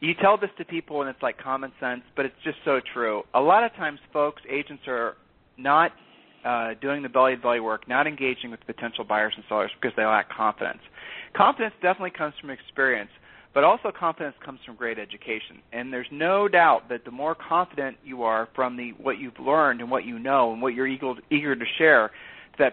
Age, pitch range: 40-59, 120-150 Hz